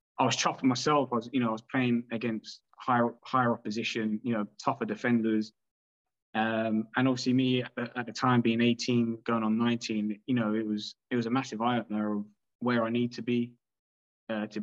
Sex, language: male, English